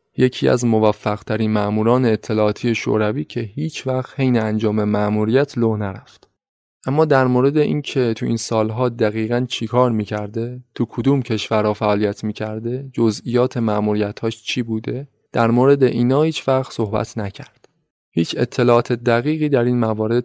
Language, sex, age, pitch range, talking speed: Persian, male, 20-39, 110-130 Hz, 135 wpm